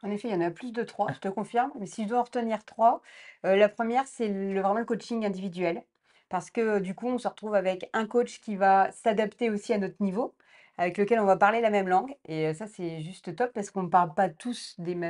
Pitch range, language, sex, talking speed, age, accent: 190-230 Hz, French, female, 250 wpm, 30-49, French